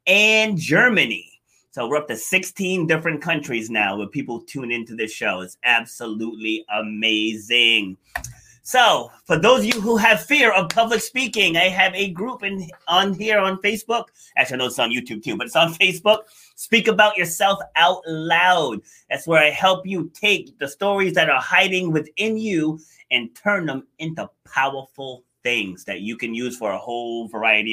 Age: 30-49